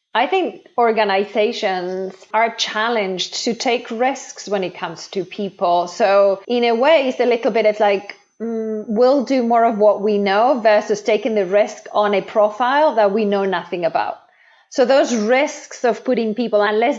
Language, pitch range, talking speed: English, 190-230 Hz, 175 wpm